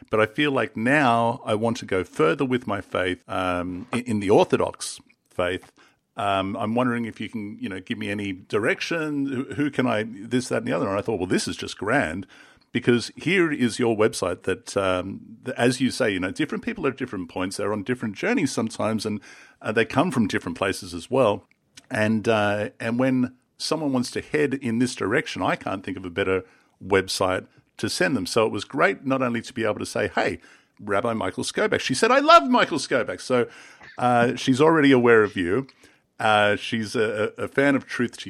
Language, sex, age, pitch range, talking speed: English, male, 50-69, 105-135 Hz, 215 wpm